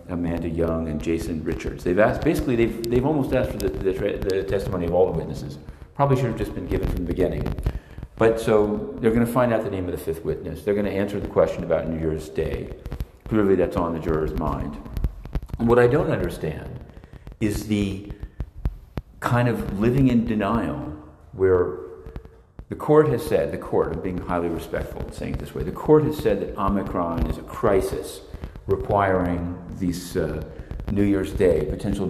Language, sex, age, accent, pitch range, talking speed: English, male, 50-69, American, 85-120 Hz, 185 wpm